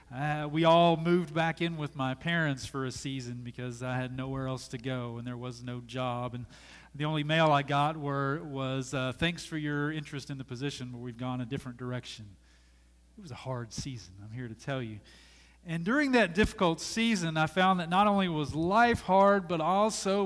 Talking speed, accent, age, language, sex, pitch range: 210 wpm, American, 40-59, English, male, 130-180 Hz